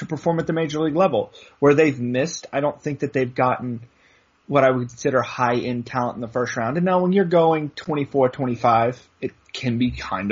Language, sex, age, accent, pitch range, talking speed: English, male, 30-49, American, 125-160 Hz, 215 wpm